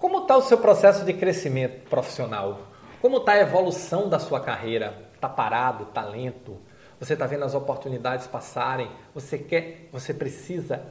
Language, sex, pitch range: Portuguese, male, 135-190 Hz